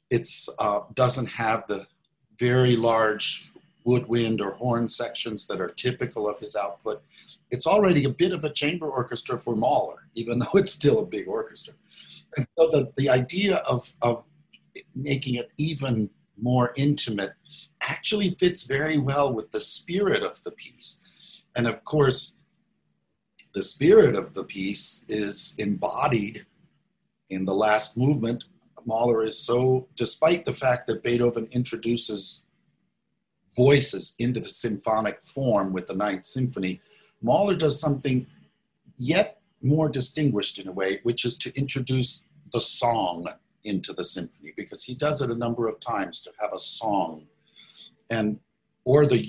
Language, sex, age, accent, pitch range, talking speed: English, male, 50-69, American, 110-145 Hz, 145 wpm